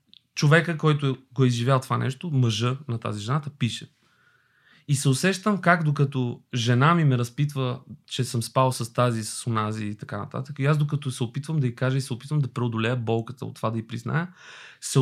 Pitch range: 125-160 Hz